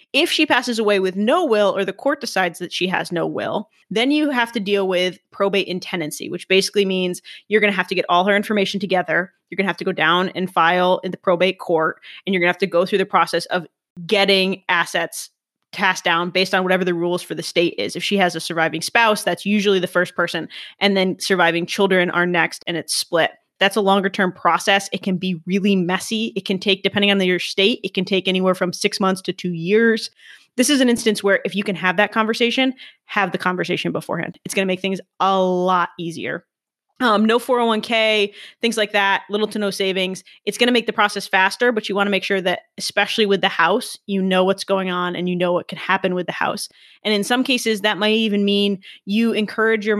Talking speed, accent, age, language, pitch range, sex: 240 wpm, American, 20-39, English, 180-210 Hz, female